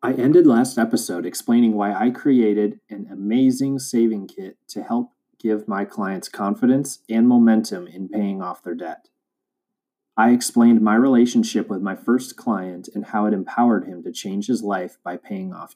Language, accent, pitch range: English, American, 105-135 Hz